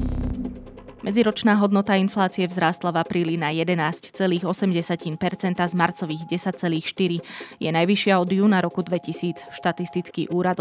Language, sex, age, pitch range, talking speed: Slovak, female, 20-39, 165-185 Hz, 105 wpm